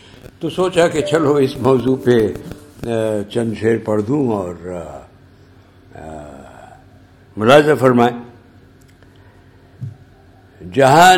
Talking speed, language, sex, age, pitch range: 80 wpm, Urdu, male, 60-79, 95-145 Hz